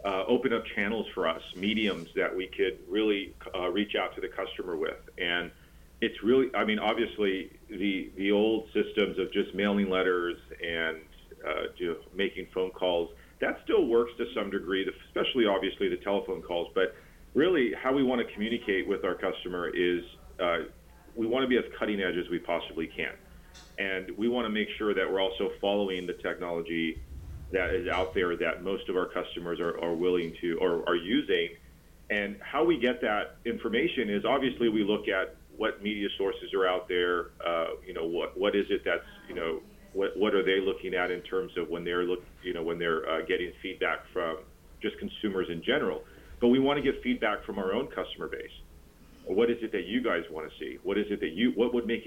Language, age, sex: English, 40-59, male